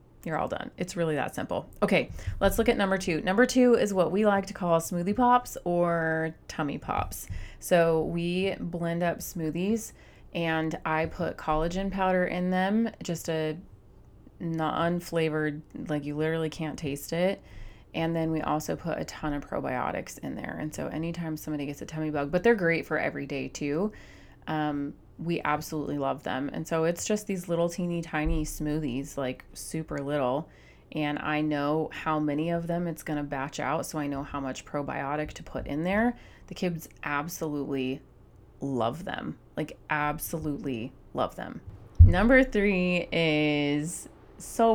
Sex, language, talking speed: female, English, 170 wpm